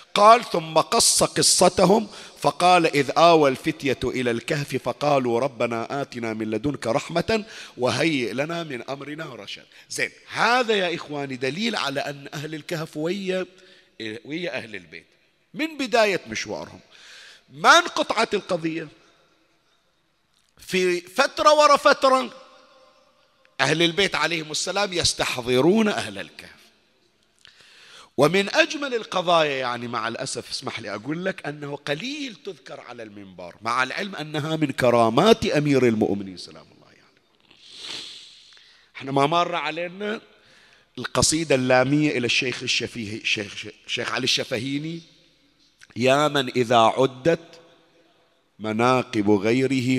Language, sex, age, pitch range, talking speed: Arabic, male, 50-69, 125-180 Hz, 115 wpm